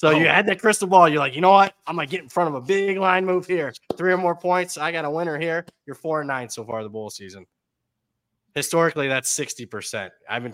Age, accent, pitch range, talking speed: 20-39, American, 115-150 Hz, 260 wpm